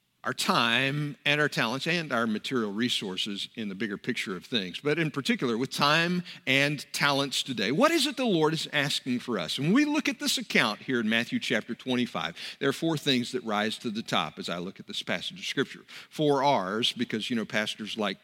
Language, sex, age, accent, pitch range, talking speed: English, male, 50-69, American, 125-200 Hz, 220 wpm